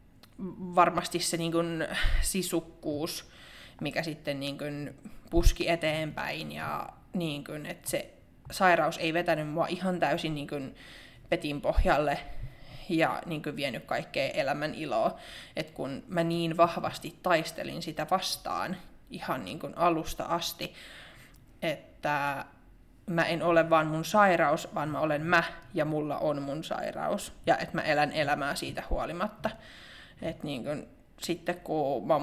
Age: 20-39